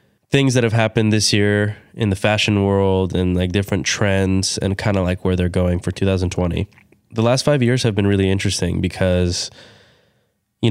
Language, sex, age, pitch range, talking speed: English, male, 20-39, 90-105 Hz, 185 wpm